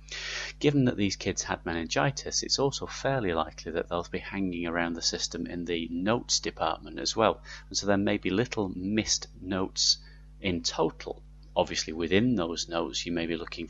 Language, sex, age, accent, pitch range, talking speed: English, male, 30-49, British, 85-115 Hz, 180 wpm